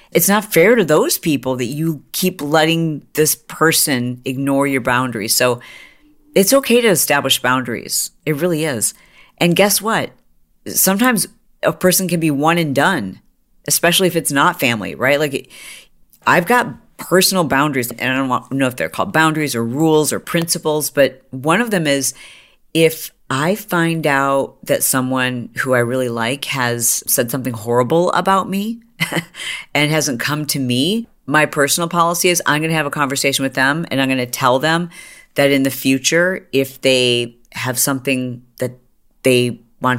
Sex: female